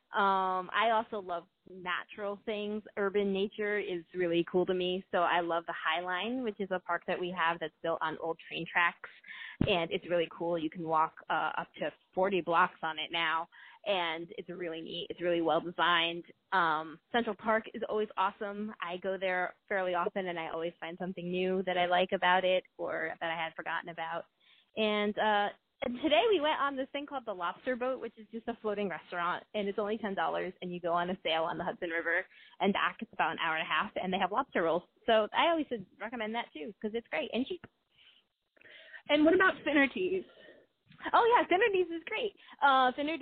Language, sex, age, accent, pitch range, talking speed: English, female, 20-39, American, 175-225 Hz, 210 wpm